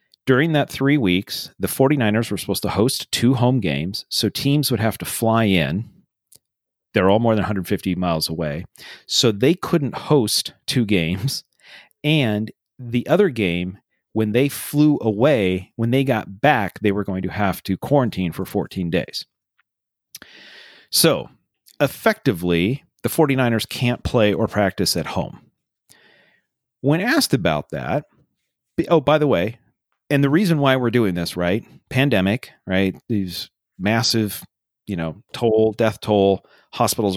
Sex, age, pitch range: male, 40-59, 95-140 Hz